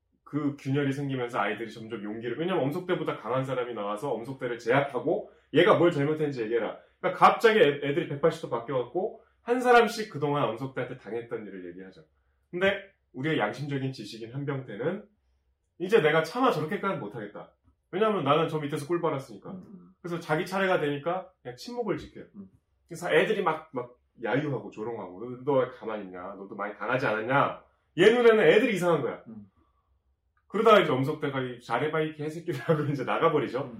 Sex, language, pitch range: male, Korean, 105-160 Hz